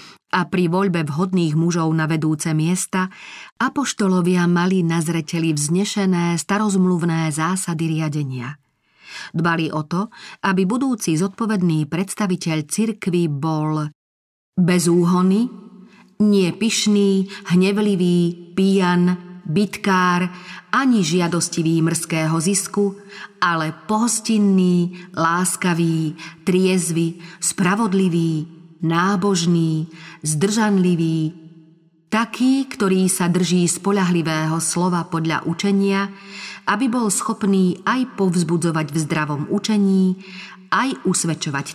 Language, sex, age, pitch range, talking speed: Slovak, female, 30-49, 165-200 Hz, 85 wpm